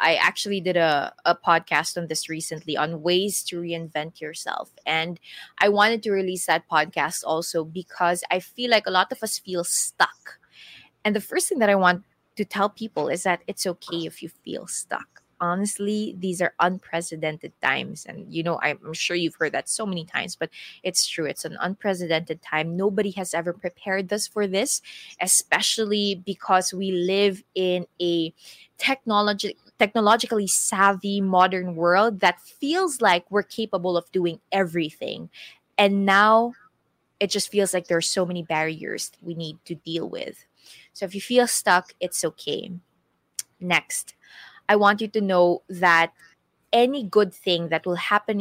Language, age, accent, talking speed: English, 20-39, Filipino, 165 wpm